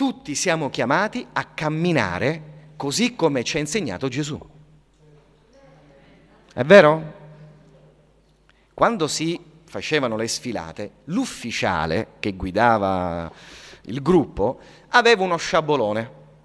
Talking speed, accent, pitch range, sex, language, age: 95 wpm, native, 145-225 Hz, male, Italian, 40-59